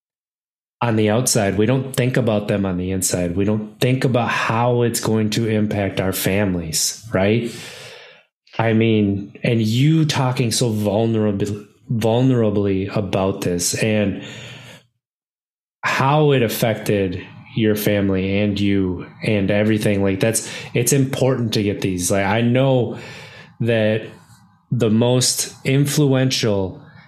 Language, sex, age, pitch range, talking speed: English, male, 20-39, 100-130 Hz, 125 wpm